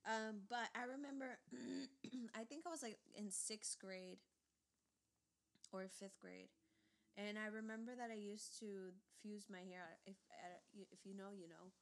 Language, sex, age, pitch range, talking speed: English, female, 20-39, 180-210 Hz, 170 wpm